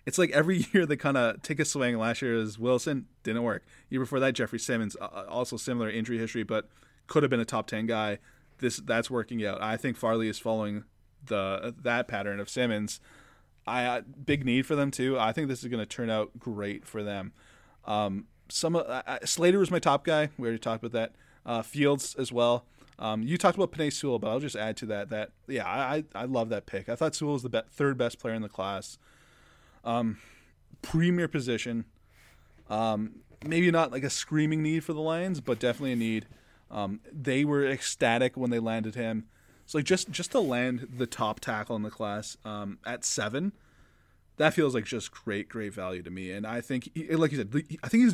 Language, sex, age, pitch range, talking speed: English, male, 20-39, 105-140 Hz, 215 wpm